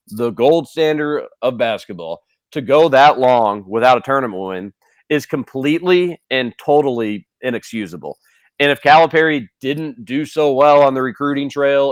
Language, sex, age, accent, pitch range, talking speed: English, male, 40-59, American, 125-155 Hz, 145 wpm